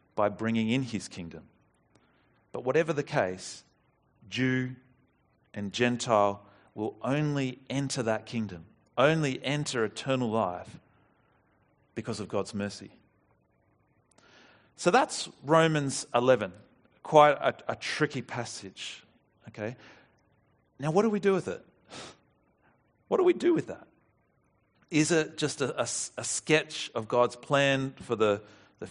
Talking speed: 125 wpm